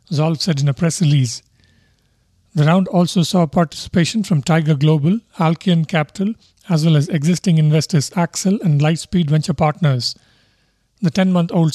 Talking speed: 145 wpm